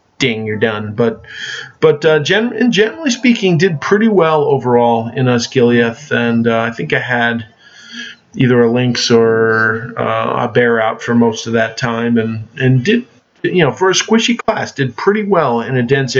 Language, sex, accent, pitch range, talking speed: English, male, American, 115-140 Hz, 185 wpm